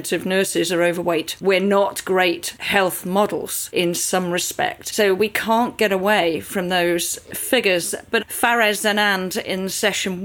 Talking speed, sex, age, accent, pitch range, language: 150 wpm, female, 40-59, British, 185-215 Hz, English